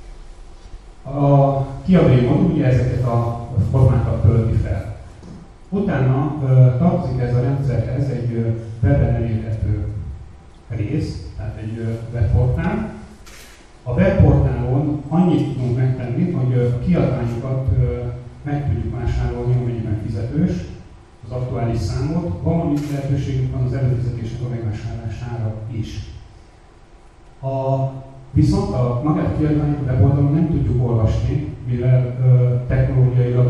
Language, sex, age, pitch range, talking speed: Hungarian, male, 30-49, 115-130 Hz, 100 wpm